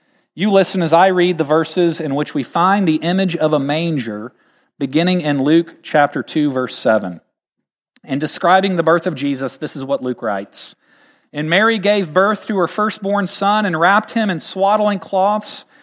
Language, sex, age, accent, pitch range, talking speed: English, male, 40-59, American, 160-215 Hz, 180 wpm